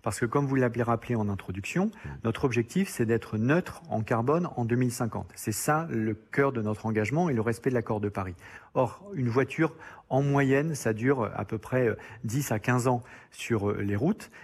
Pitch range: 110-135 Hz